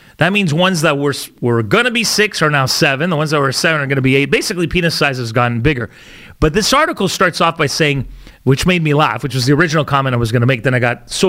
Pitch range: 130-170 Hz